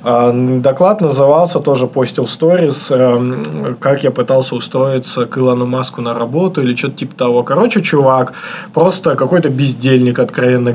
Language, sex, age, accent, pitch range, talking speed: Russian, male, 20-39, native, 125-160 Hz, 140 wpm